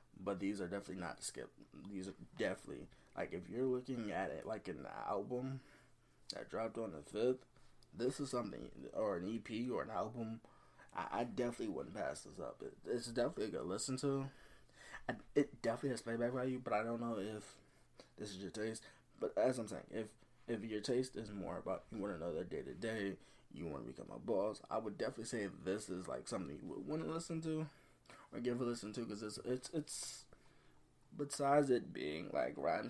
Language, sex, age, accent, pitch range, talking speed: English, male, 20-39, American, 100-130 Hz, 200 wpm